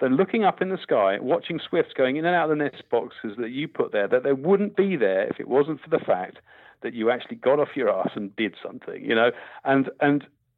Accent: British